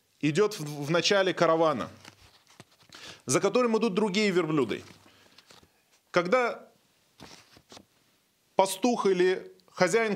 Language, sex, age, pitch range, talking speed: Russian, male, 20-39, 180-230 Hz, 75 wpm